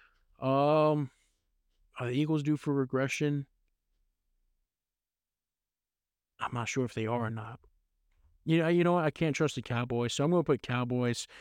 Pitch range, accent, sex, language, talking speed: 120-140 Hz, American, male, English, 160 wpm